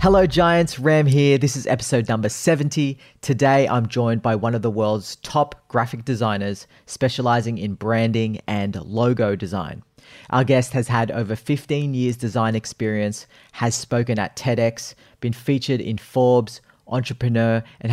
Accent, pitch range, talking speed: Australian, 110-130 Hz, 150 wpm